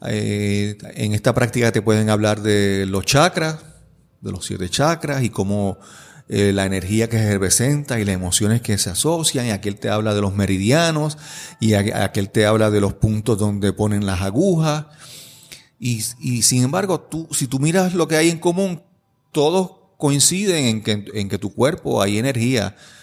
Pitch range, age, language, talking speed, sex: 105-140 Hz, 40-59, Spanish, 180 wpm, male